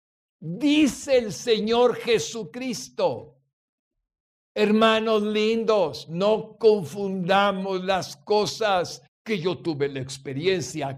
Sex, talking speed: male, 80 wpm